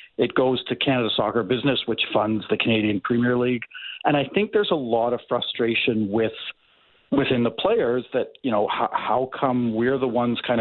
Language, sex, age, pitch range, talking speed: English, male, 40-59, 115-135 Hz, 190 wpm